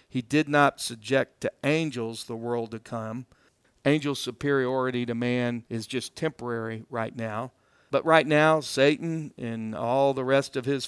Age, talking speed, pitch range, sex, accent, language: 50-69, 160 wpm, 120-145 Hz, male, American, English